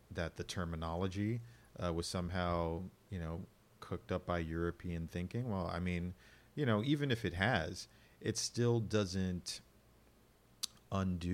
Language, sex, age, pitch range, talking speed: English, male, 40-59, 85-105 Hz, 140 wpm